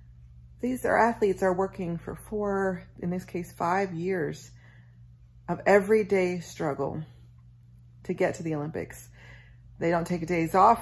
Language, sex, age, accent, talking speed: English, female, 30-49, American, 140 wpm